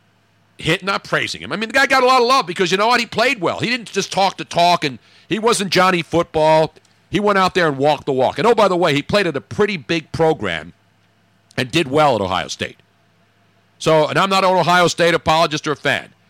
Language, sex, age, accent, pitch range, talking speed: English, male, 50-69, American, 115-175 Hz, 250 wpm